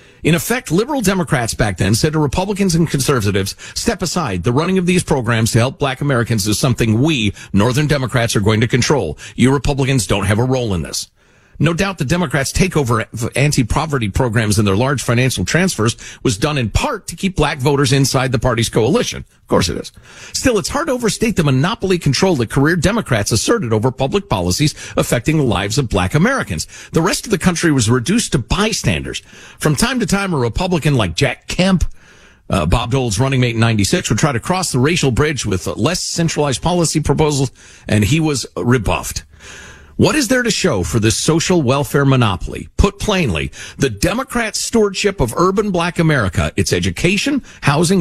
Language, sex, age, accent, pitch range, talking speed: English, male, 50-69, American, 115-170 Hz, 190 wpm